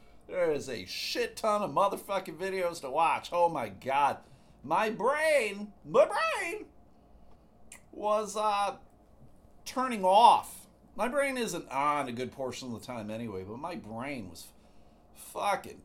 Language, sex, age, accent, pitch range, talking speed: English, male, 40-59, American, 125-210 Hz, 140 wpm